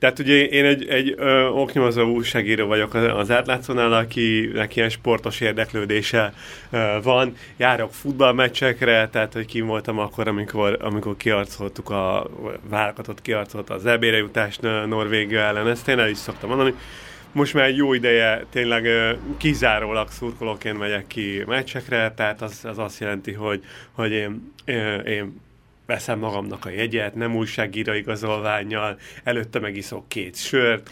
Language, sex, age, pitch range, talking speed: Hungarian, male, 30-49, 110-125 Hz, 140 wpm